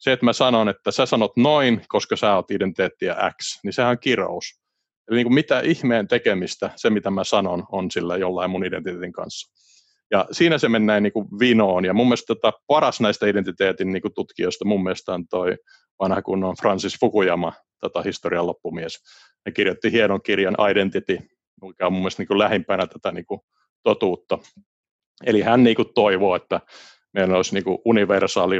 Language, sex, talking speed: Finnish, male, 170 wpm